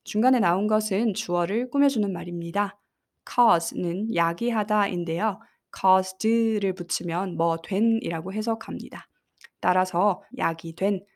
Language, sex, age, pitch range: Korean, female, 20-39, 175-210 Hz